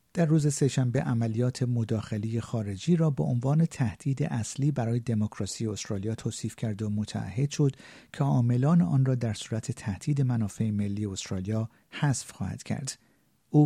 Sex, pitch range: male, 110-140 Hz